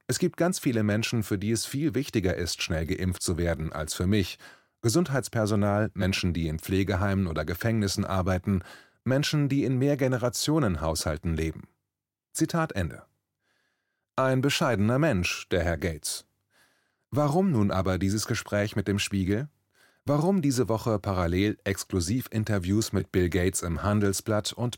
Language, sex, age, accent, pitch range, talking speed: German, male, 30-49, German, 95-125 Hz, 140 wpm